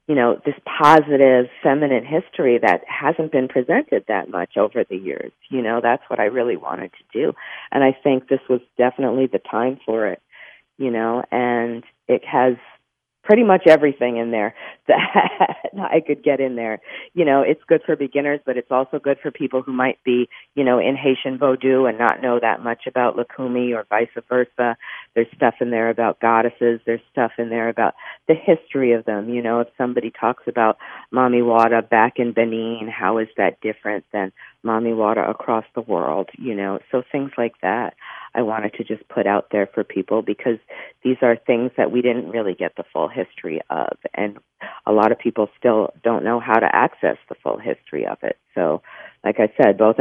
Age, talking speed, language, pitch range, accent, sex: 40-59, 200 wpm, English, 110-130 Hz, American, female